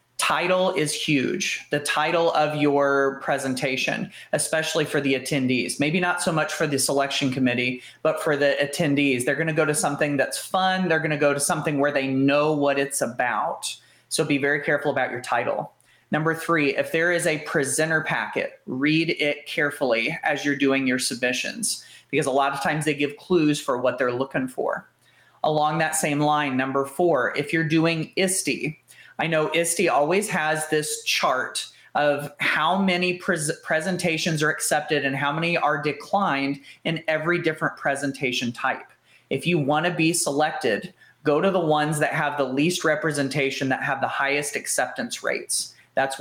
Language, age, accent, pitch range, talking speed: English, 30-49, American, 140-165 Hz, 175 wpm